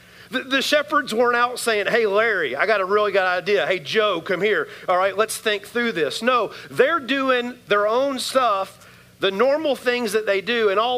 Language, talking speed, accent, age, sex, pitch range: English, 200 wpm, American, 40-59, male, 175-230 Hz